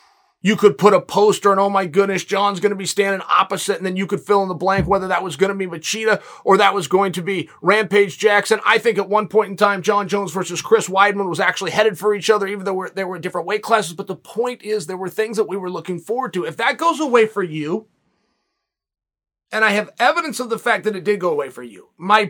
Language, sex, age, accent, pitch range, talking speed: English, male, 30-49, American, 190-230 Hz, 260 wpm